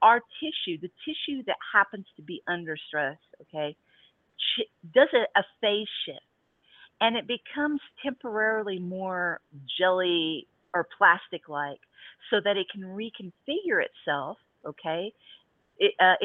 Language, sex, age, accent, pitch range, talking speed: English, female, 50-69, American, 155-225 Hz, 120 wpm